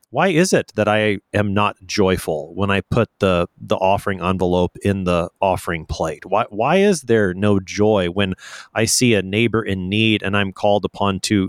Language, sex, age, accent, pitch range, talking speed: English, male, 30-49, American, 95-125 Hz, 195 wpm